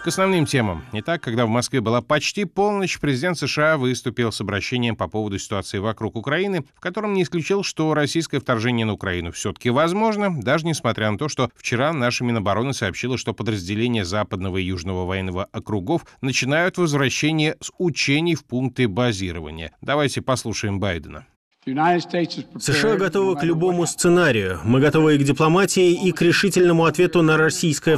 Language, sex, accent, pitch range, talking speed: Russian, male, native, 125-175 Hz, 155 wpm